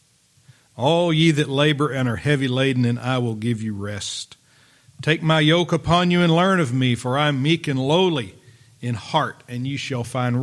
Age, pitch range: 50-69, 125-160 Hz